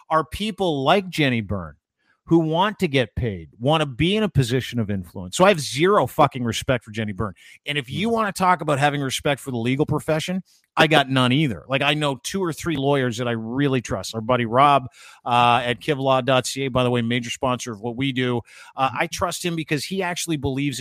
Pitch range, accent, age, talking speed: 125-165 Hz, American, 40-59, 225 wpm